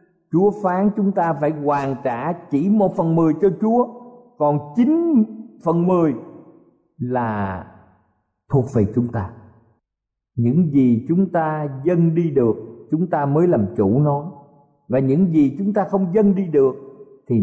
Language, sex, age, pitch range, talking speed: Vietnamese, male, 50-69, 140-200 Hz, 155 wpm